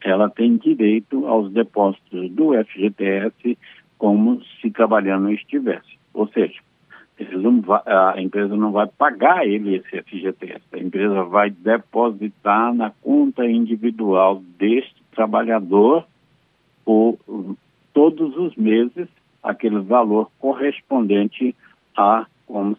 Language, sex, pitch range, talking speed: Portuguese, male, 100-120 Hz, 100 wpm